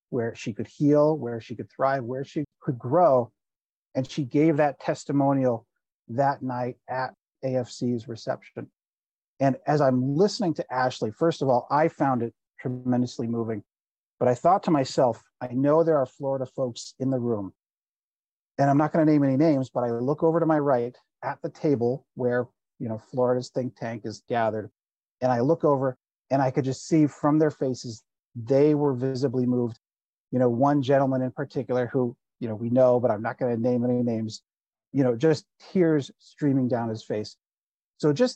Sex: male